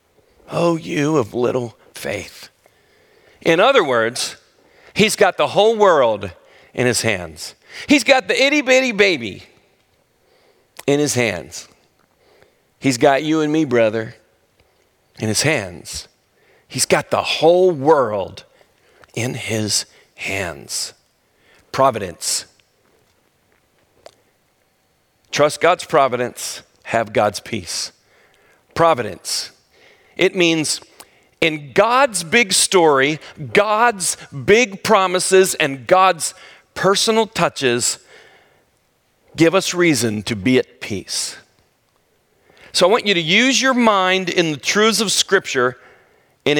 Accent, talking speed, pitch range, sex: American, 105 wpm, 125-195 Hz, male